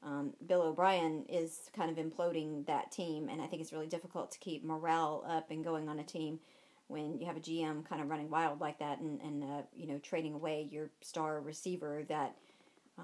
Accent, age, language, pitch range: American, 40-59, English, 160-195 Hz